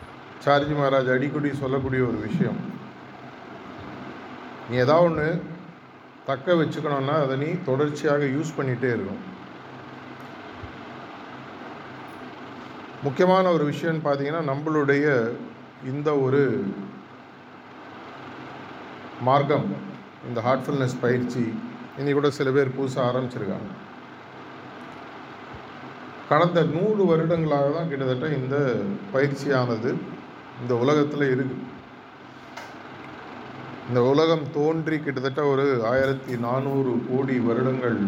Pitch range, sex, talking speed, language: 125-150 Hz, male, 80 wpm, Tamil